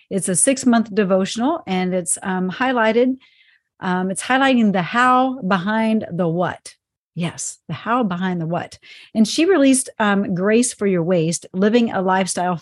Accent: American